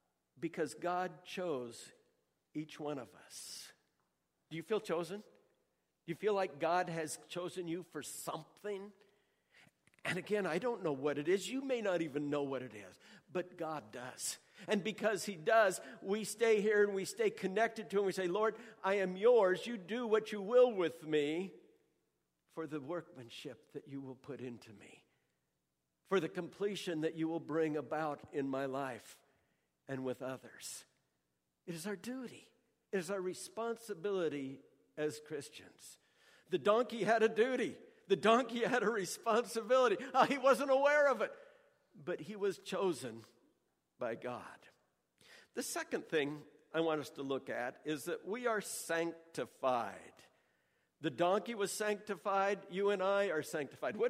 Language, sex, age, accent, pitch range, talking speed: English, male, 60-79, American, 155-210 Hz, 160 wpm